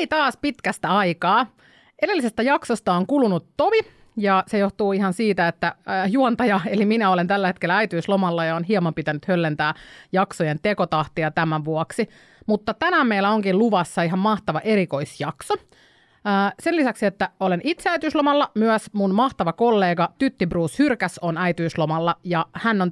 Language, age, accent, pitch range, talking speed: Finnish, 30-49, native, 170-220 Hz, 150 wpm